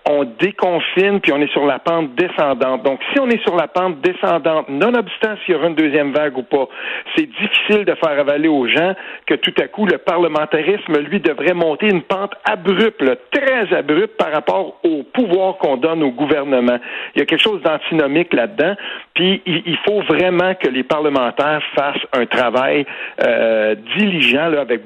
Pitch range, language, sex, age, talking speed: 150-210 Hz, French, male, 60-79, 180 wpm